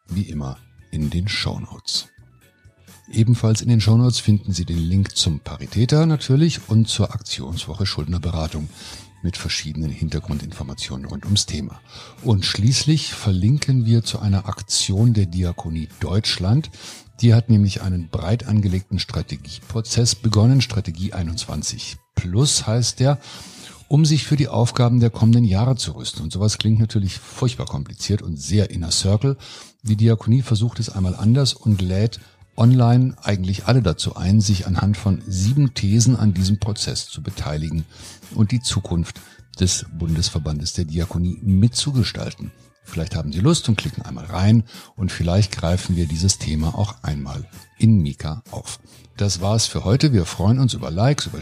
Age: 50-69